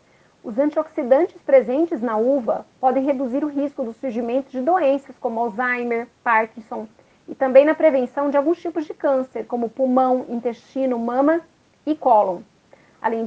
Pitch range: 250-310 Hz